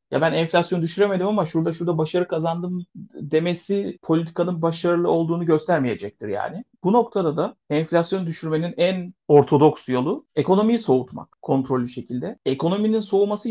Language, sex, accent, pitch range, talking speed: Turkish, male, native, 140-180 Hz, 130 wpm